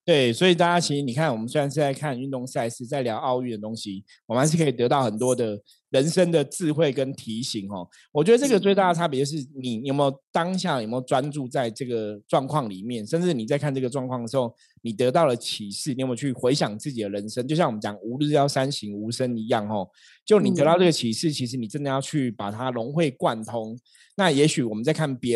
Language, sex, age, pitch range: Chinese, male, 20-39, 115-145 Hz